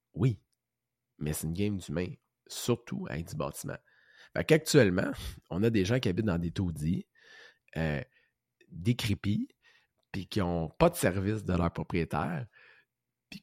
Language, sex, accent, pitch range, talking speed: French, male, Canadian, 90-120 Hz, 145 wpm